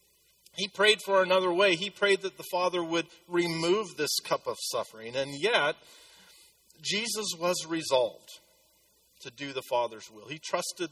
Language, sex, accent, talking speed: English, male, American, 155 wpm